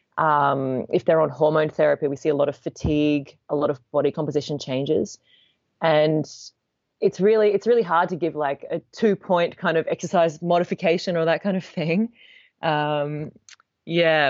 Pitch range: 145-170 Hz